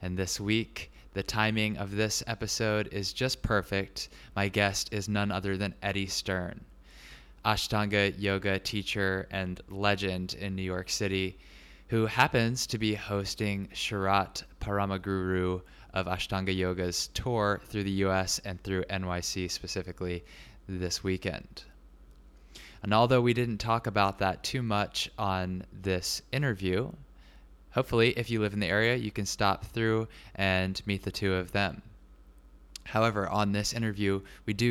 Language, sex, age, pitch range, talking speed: English, male, 20-39, 95-110 Hz, 145 wpm